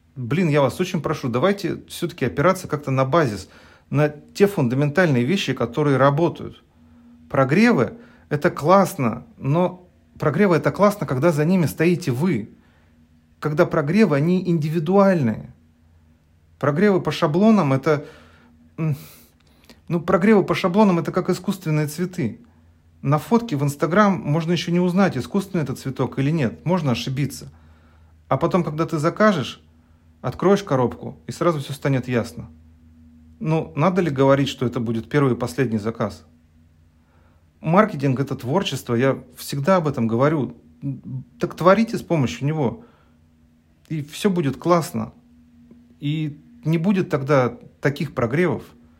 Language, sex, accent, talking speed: Russian, male, native, 130 wpm